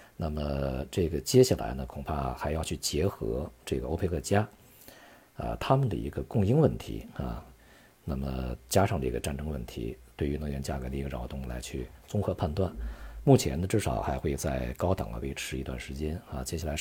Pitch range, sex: 65-95 Hz, male